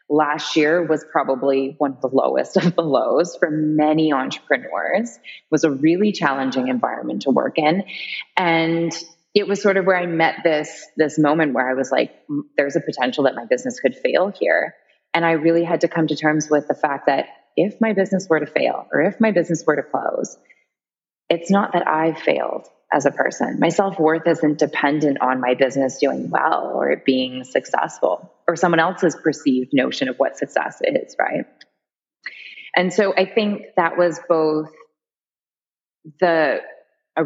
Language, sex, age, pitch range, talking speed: English, female, 20-39, 140-175 Hz, 180 wpm